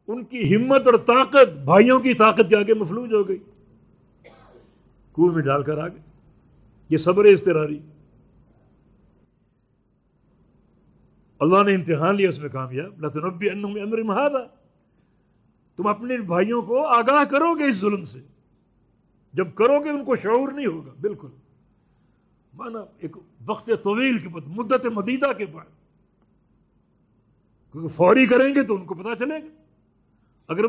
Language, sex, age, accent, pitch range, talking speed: English, male, 60-79, Indian, 165-235 Hz, 80 wpm